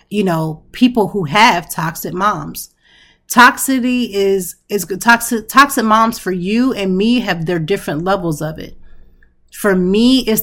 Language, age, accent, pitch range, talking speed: English, 30-49, American, 165-200 Hz, 150 wpm